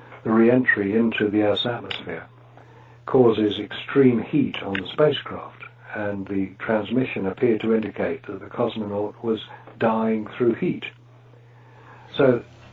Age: 60-79